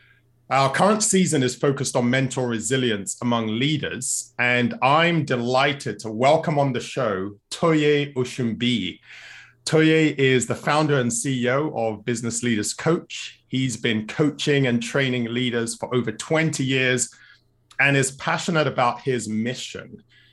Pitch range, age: 120-145 Hz, 30-49